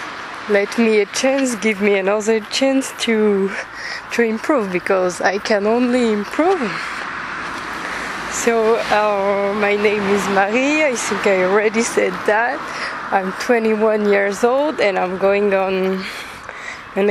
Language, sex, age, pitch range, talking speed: English, female, 20-39, 200-230 Hz, 130 wpm